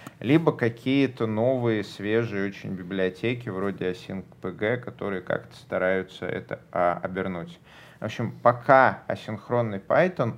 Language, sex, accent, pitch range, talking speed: Russian, male, native, 95-115 Hz, 105 wpm